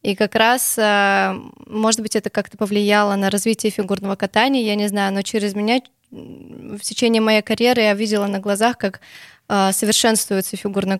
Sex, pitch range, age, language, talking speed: female, 195-220 Hz, 20-39, Russian, 160 wpm